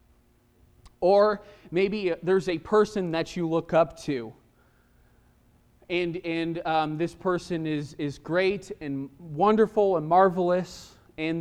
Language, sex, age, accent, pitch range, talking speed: English, male, 20-39, American, 150-190 Hz, 120 wpm